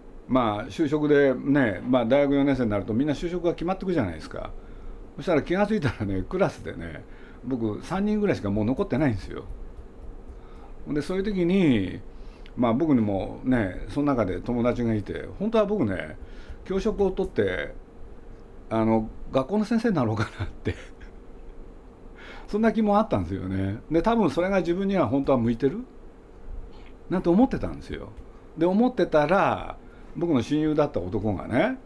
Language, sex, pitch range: Japanese, male, 95-155 Hz